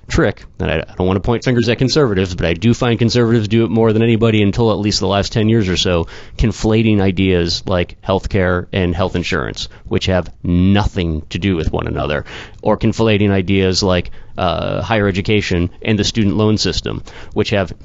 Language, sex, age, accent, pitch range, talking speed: English, male, 30-49, American, 95-115 Hz, 200 wpm